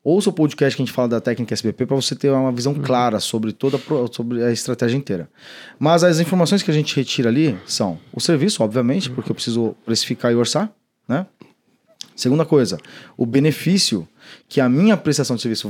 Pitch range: 120-150 Hz